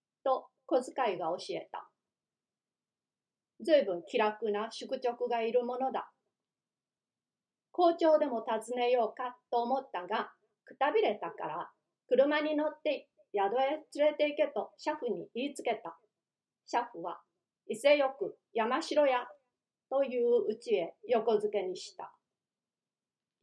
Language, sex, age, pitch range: Japanese, female, 40-59, 210-295 Hz